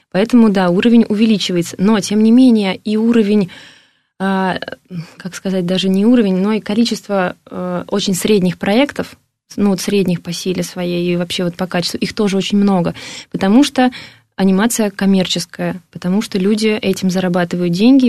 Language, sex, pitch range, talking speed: Russian, female, 180-210 Hz, 155 wpm